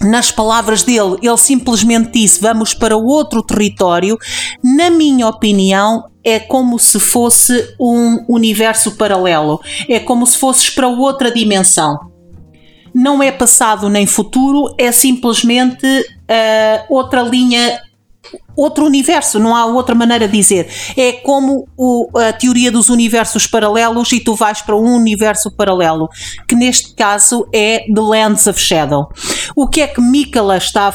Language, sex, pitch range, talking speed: Portuguese, female, 195-245 Hz, 145 wpm